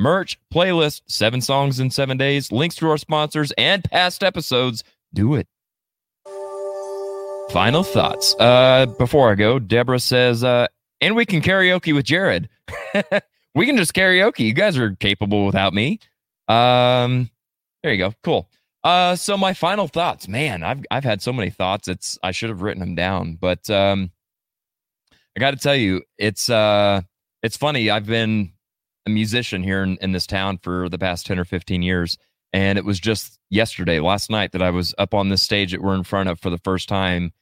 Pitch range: 90-125 Hz